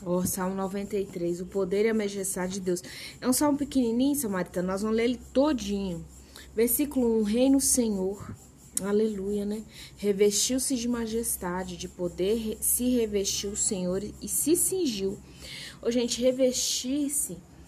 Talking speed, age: 150 wpm, 20-39